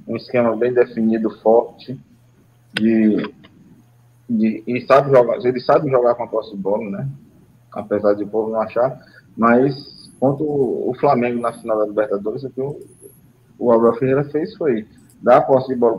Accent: Brazilian